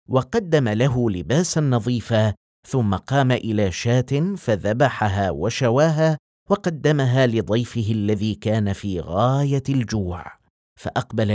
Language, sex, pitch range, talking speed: Arabic, male, 105-150 Hz, 95 wpm